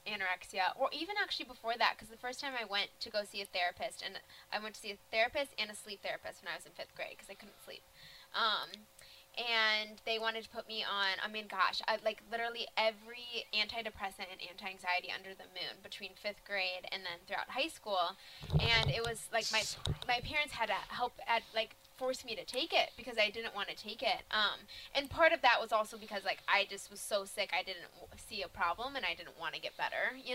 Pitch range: 200-255 Hz